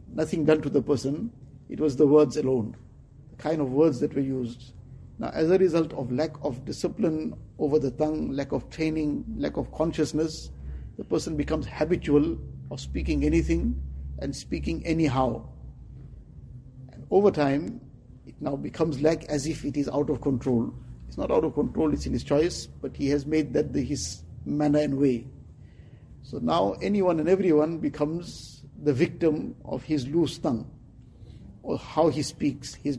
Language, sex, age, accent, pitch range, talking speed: English, male, 60-79, Indian, 130-160 Hz, 170 wpm